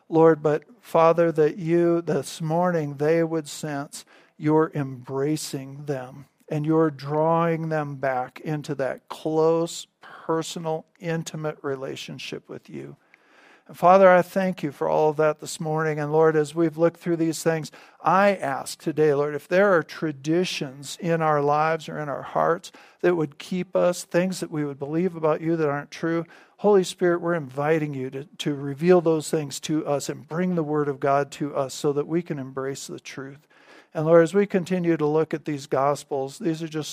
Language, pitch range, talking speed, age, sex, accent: English, 145-165 Hz, 185 wpm, 50-69, male, American